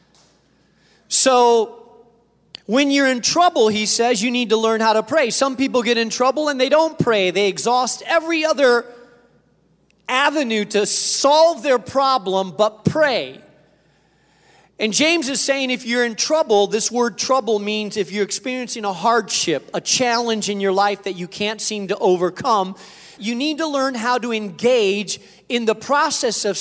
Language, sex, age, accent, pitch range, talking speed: English, male, 40-59, American, 205-255 Hz, 165 wpm